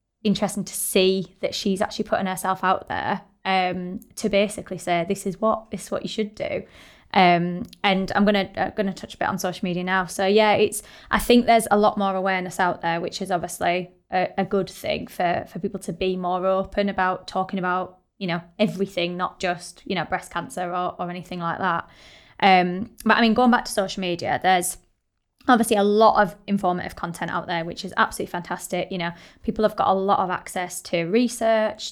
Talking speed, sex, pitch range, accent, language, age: 210 wpm, female, 180-205 Hz, British, English, 20-39